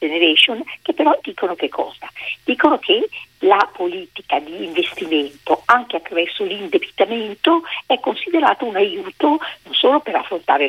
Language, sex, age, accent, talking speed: Italian, female, 50-69, native, 130 wpm